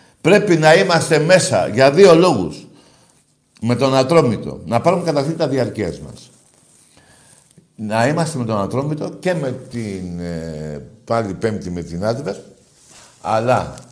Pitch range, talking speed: 110-150 Hz, 130 wpm